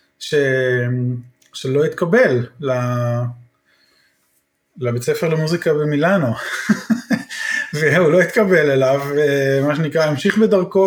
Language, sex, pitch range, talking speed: English, male, 135-185 Hz, 75 wpm